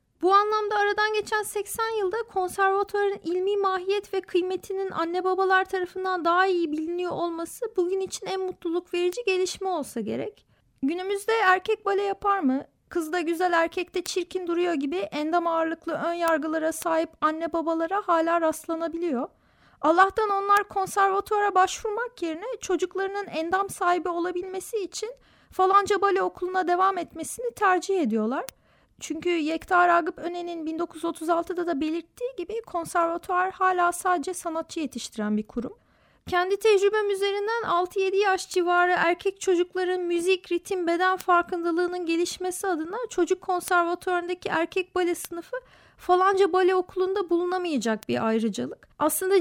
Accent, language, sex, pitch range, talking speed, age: native, Turkish, female, 340-390 Hz, 125 wpm, 30-49